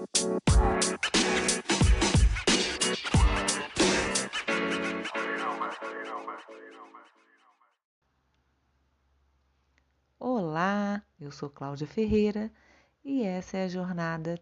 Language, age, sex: Portuguese, 40-59, female